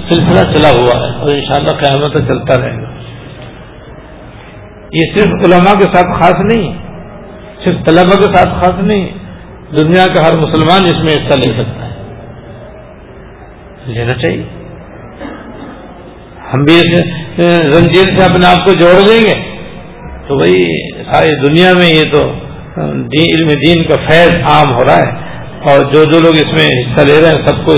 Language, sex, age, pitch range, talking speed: Urdu, male, 50-69, 140-175 Hz, 170 wpm